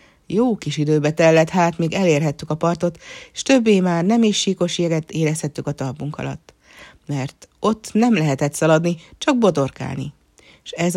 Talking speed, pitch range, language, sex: 155 wpm, 150-205 Hz, Hungarian, female